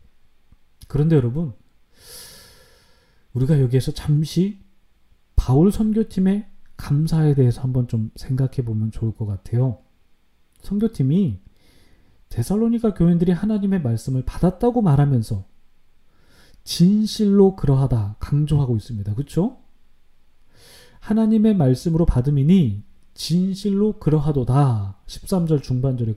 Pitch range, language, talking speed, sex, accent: 110-180 Hz, English, 80 wpm, male, Korean